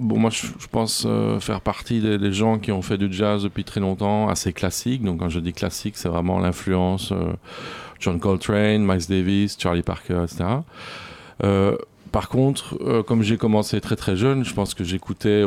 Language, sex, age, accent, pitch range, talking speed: French, male, 40-59, French, 90-110 Hz, 190 wpm